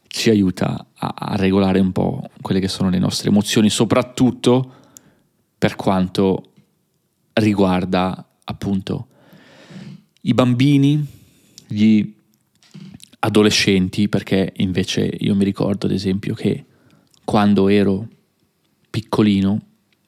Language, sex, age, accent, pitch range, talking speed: Italian, male, 30-49, native, 100-115 Hz, 95 wpm